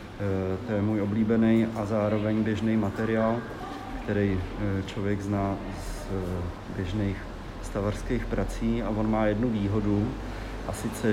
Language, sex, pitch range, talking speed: Czech, male, 105-120 Hz, 120 wpm